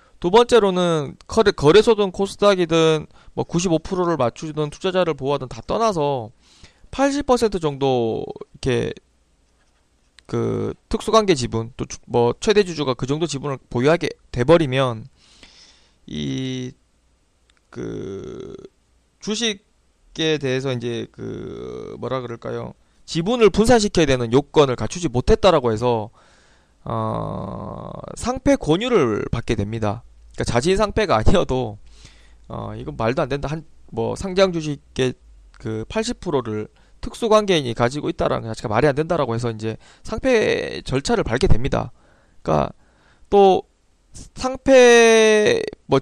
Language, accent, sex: Korean, native, male